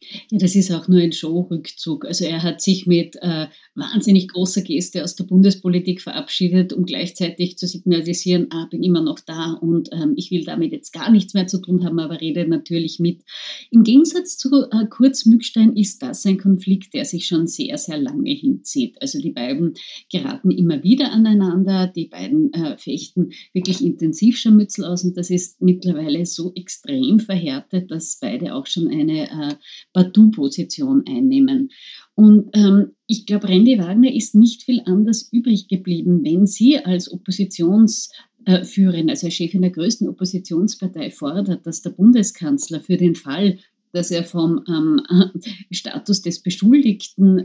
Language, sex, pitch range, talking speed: German, female, 175-220 Hz, 160 wpm